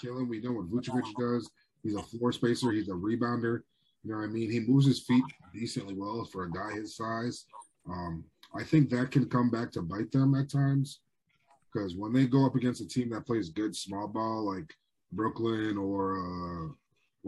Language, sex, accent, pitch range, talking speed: English, male, American, 105-140 Hz, 200 wpm